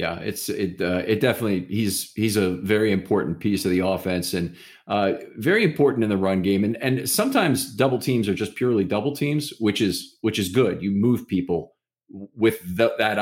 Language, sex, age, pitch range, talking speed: English, male, 40-59, 95-115 Hz, 200 wpm